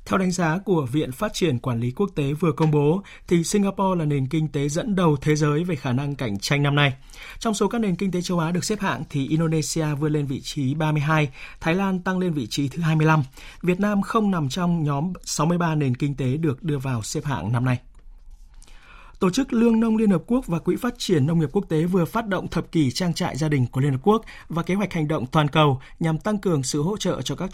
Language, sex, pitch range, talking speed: Vietnamese, male, 145-190 Hz, 255 wpm